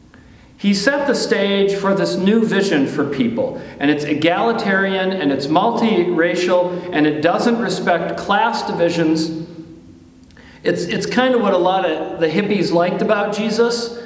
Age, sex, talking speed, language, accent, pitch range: 40-59, male, 150 wpm, English, American, 145-205 Hz